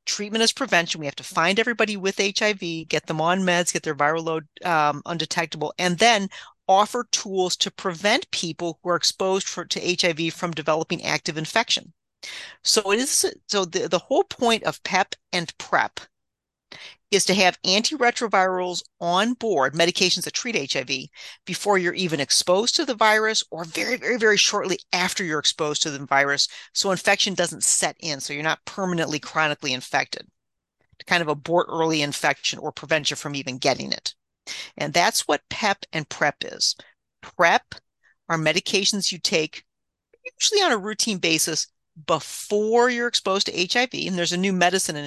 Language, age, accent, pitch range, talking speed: English, 40-59, American, 160-205 Hz, 170 wpm